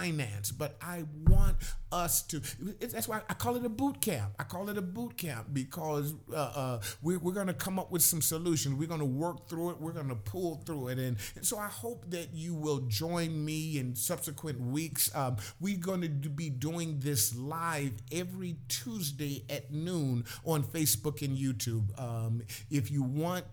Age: 50-69